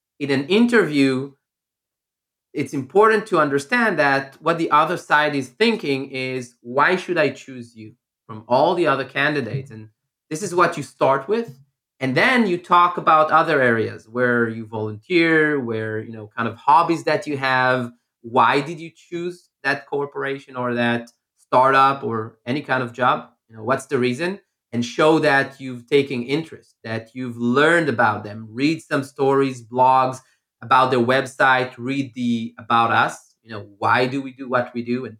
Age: 20-39